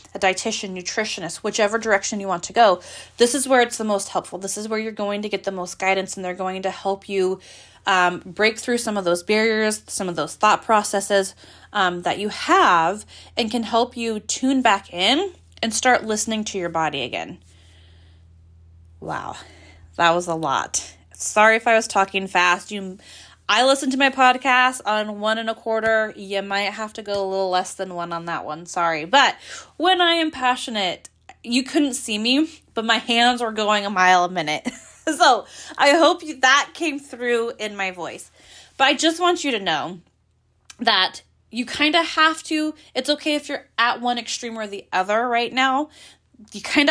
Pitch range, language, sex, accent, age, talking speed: 185-245 Hz, English, female, American, 20-39, 195 wpm